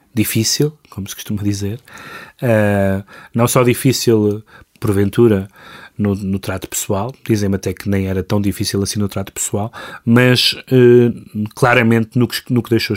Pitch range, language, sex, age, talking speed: 100-120 Hz, Portuguese, male, 30-49, 140 wpm